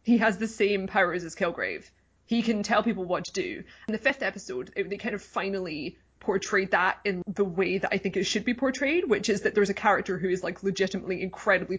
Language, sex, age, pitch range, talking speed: English, female, 20-39, 185-215 Hz, 235 wpm